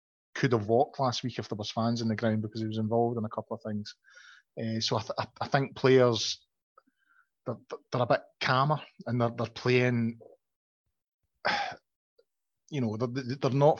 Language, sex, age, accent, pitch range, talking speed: English, male, 30-49, British, 110-120 Hz, 185 wpm